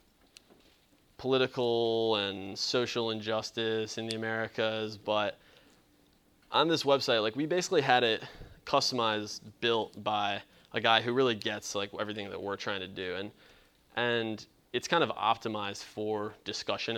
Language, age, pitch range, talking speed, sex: English, 20-39, 105-125 Hz, 140 wpm, male